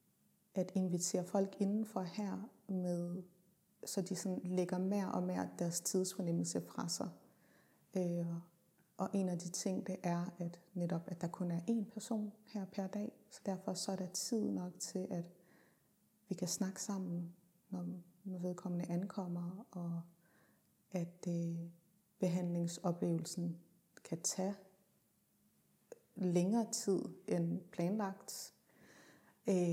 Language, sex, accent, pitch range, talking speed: Danish, female, native, 170-190 Hz, 115 wpm